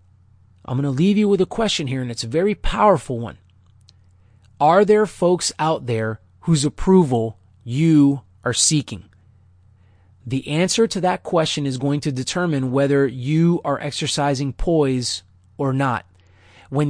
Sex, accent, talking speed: male, American, 150 wpm